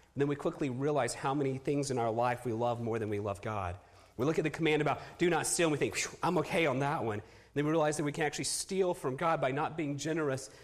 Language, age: English, 30-49